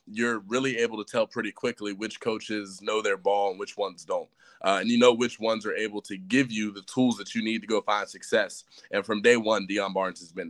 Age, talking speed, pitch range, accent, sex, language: 20-39, 250 wpm, 105-125 Hz, American, male, English